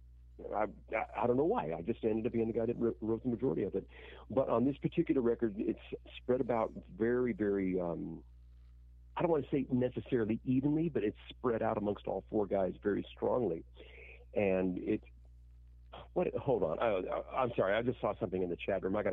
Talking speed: 200 wpm